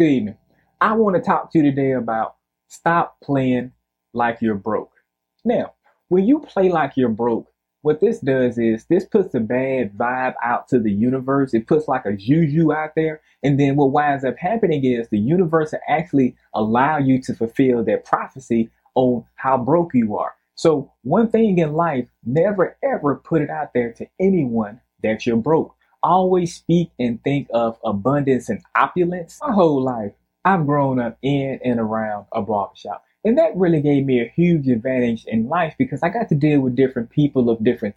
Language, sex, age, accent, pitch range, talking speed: English, male, 20-39, American, 120-165 Hz, 190 wpm